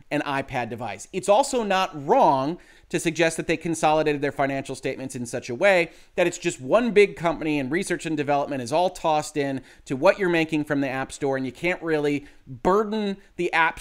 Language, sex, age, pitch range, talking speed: English, male, 30-49, 135-165 Hz, 210 wpm